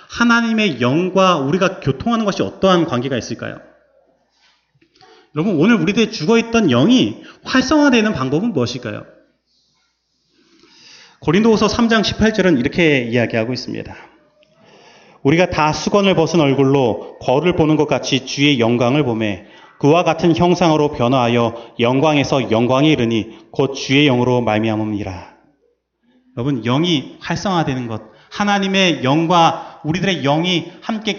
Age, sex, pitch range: 30-49, male, 130-190 Hz